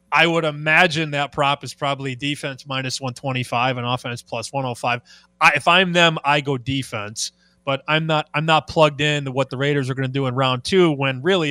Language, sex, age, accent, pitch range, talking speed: English, male, 20-39, American, 130-155 Hz, 215 wpm